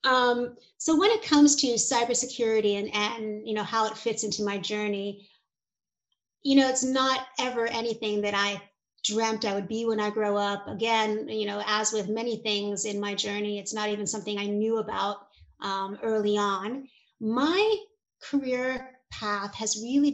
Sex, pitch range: female, 205-250 Hz